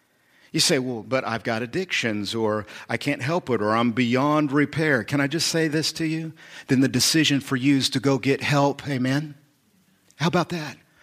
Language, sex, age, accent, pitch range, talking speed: English, male, 50-69, American, 130-190 Hz, 200 wpm